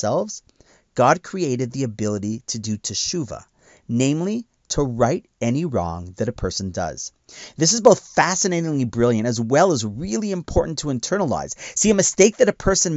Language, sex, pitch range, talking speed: English, male, 115-165 Hz, 155 wpm